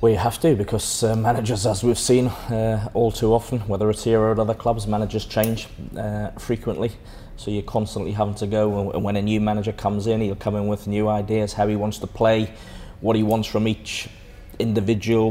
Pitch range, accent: 105-115 Hz, British